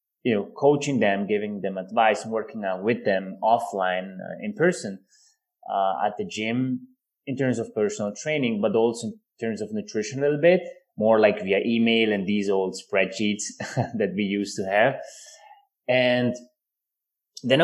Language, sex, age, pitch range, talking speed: English, male, 20-39, 105-135 Hz, 165 wpm